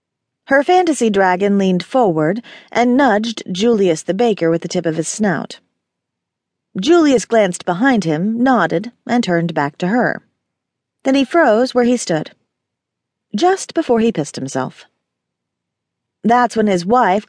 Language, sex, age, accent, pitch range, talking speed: English, female, 40-59, American, 170-245 Hz, 140 wpm